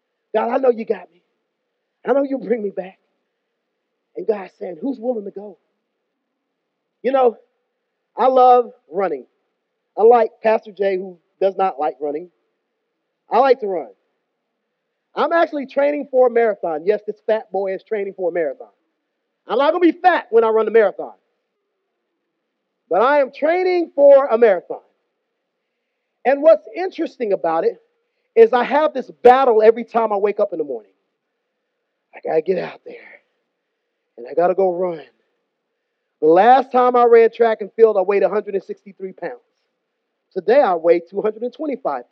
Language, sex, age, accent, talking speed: English, male, 40-59, American, 160 wpm